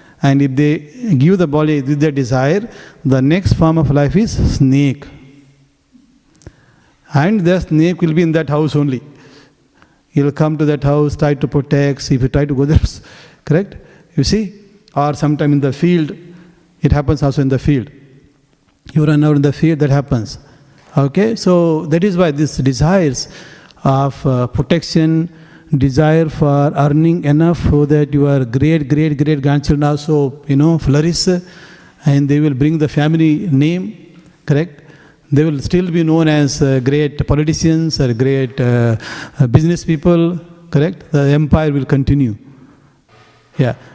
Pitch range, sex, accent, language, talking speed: 140-160 Hz, male, Indian, English, 155 wpm